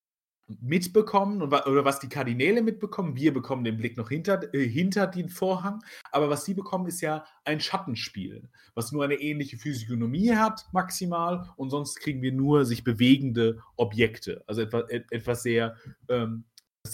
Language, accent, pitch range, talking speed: German, German, 125-165 Hz, 155 wpm